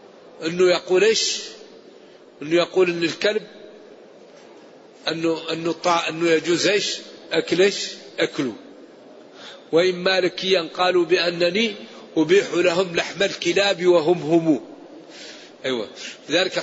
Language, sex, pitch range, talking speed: Arabic, male, 170-200 Hz, 95 wpm